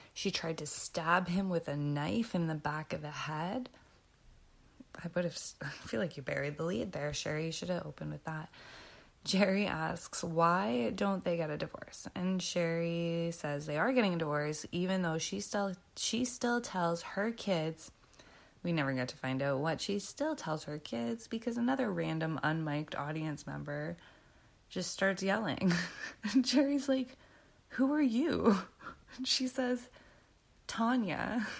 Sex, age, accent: female, 20-39, American